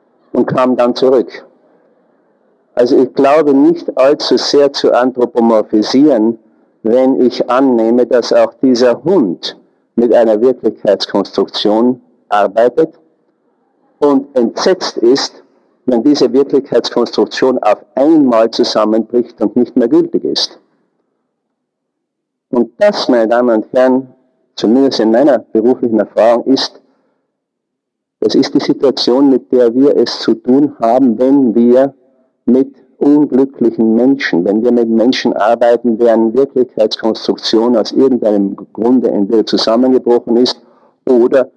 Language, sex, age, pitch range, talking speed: German, male, 50-69, 115-140 Hz, 115 wpm